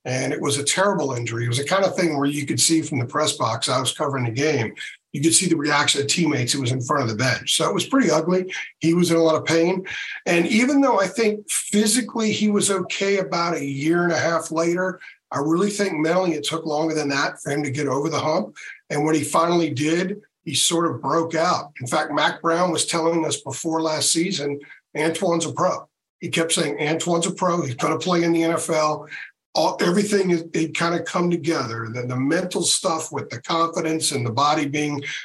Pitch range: 145-175 Hz